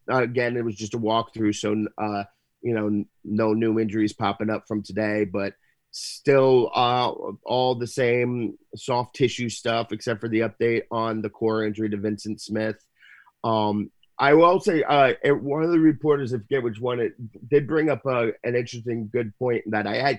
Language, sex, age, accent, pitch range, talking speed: English, male, 30-49, American, 110-140 Hz, 185 wpm